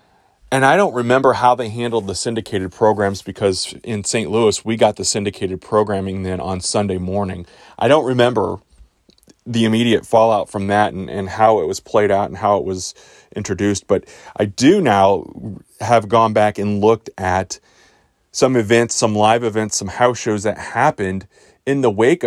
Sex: male